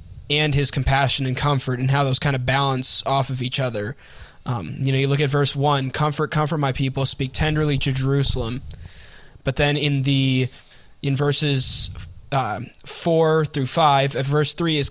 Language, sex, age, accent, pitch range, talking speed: English, male, 20-39, American, 130-140 Hz, 175 wpm